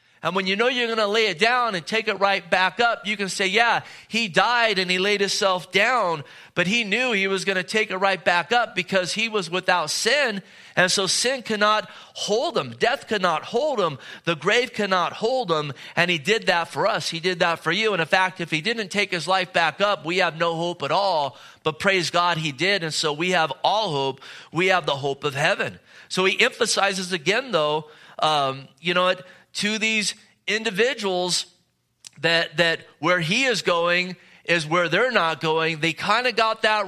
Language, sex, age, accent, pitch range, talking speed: English, male, 30-49, American, 150-195 Hz, 215 wpm